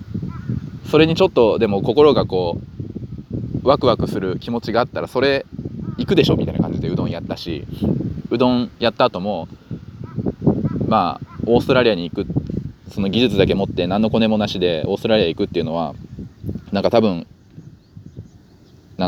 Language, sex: Japanese, male